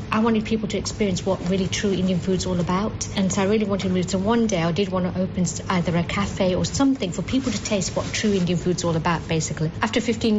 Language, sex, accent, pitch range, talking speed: English, female, British, 180-210 Hz, 260 wpm